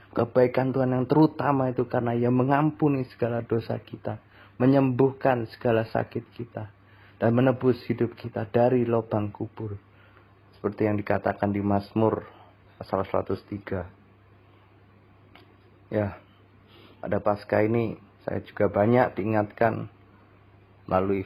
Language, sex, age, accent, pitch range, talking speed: Indonesian, male, 30-49, native, 100-120 Hz, 105 wpm